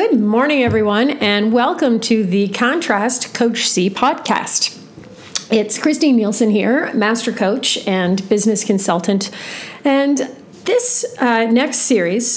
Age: 40-59